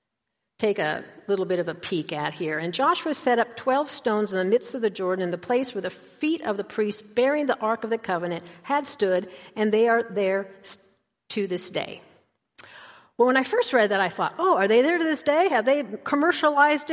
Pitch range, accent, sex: 190-255 Hz, American, female